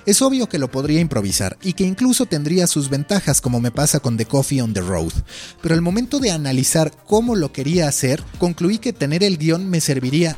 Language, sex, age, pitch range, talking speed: Spanish, male, 30-49, 130-180 Hz, 215 wpm